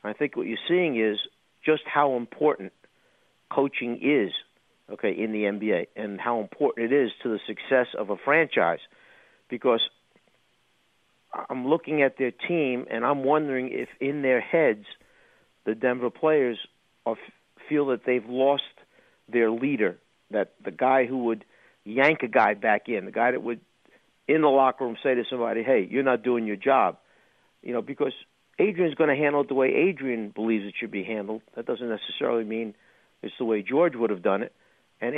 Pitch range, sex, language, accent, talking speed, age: 115-140 Hz, male, English, American, 180 wpm, 50-69